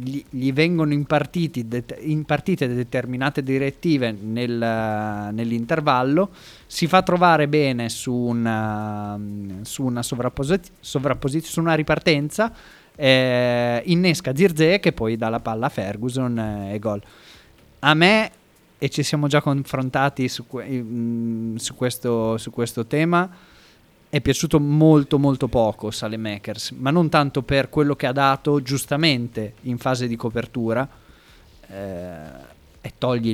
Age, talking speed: 30-49, 125 wpm